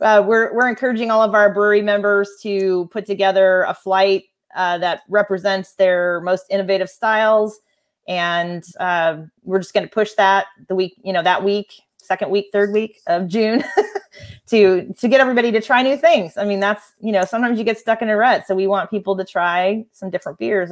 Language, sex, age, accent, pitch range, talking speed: English, female, 30-49, American, 180-220 Hz, 205 wpm